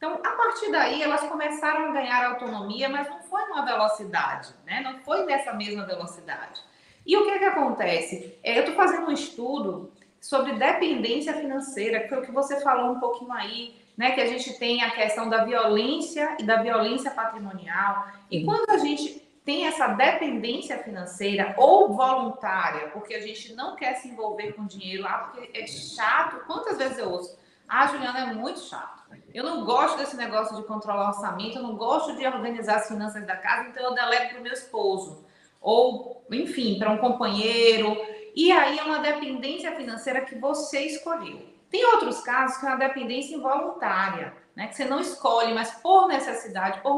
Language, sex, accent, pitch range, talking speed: Portuguese, female, Brazilian, 215-280 Hz, 185 wpm